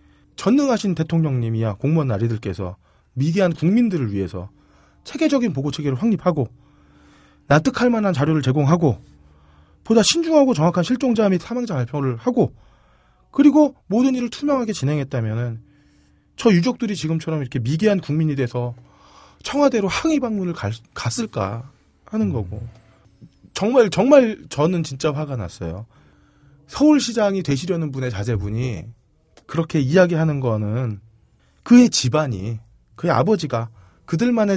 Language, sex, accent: Korean, male, native